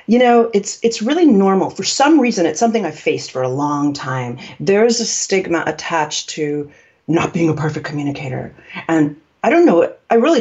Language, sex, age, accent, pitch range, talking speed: English, female, 40-59, American, 165-215 Hz, 190 wpm